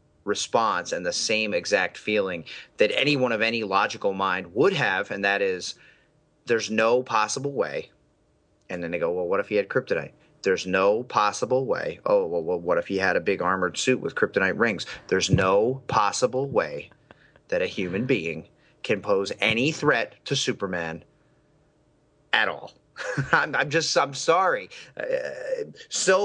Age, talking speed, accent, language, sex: 30-49, 165 wpm, American, English, male